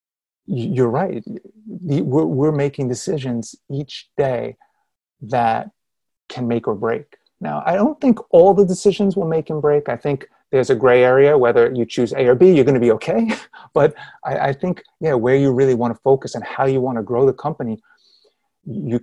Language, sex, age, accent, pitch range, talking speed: English, male, 30-49, American, 120-145 Hz, 185 wpm